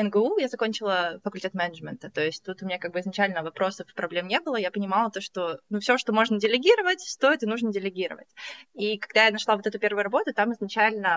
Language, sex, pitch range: Russian, female, 180-220 Hz